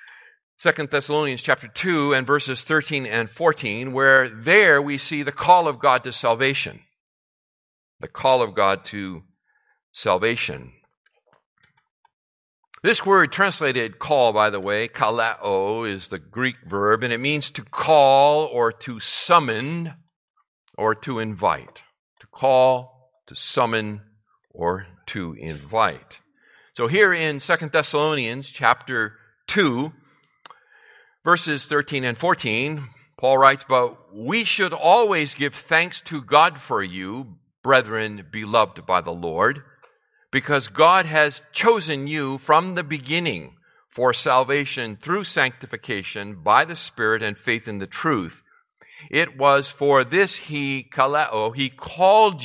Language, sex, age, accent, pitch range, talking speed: English, male, 50-69, American, 115-155 Hz, 125 wpm